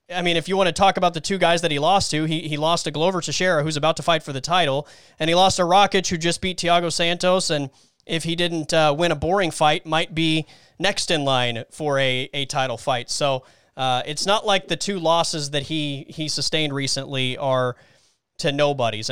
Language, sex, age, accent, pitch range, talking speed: English, male, 30-49, American, 145-180 Hz, 230 wpm